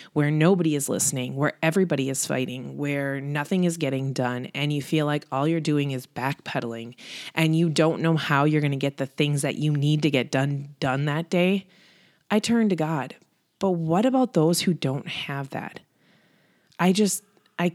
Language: English